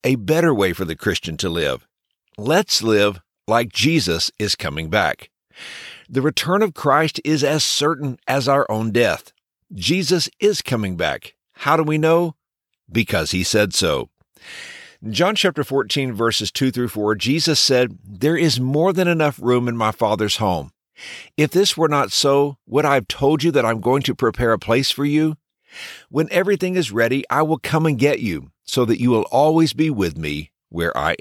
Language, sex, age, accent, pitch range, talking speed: English, male, 50-69, American, 110-150 Hz, 185 wpm